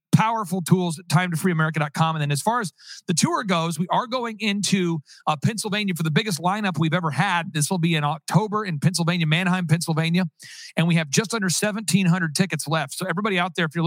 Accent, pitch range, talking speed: American, 150-180 Hz, 210 wpm